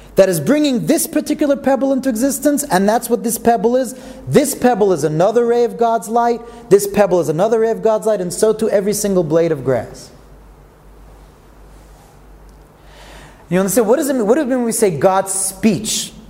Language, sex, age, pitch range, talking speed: English, male, 30-49, 175-235 Hz, 195 wpm